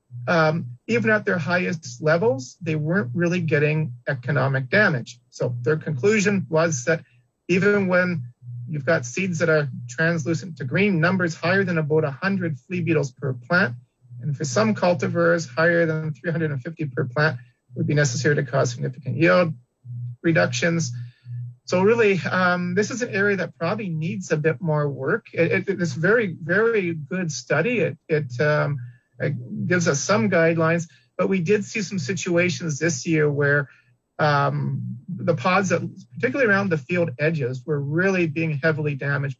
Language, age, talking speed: English, 40-59, 155 wpm